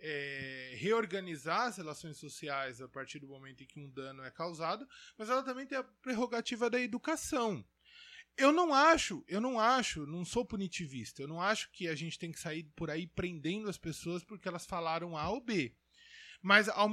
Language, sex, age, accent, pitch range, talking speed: Portuguese, male, 20-39, Brazilian, 160-220 Hz, 185 wpm